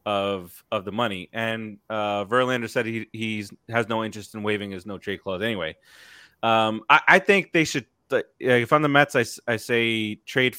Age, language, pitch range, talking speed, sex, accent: 30-49, English, 100-140 Hz, 200 wpm, male, American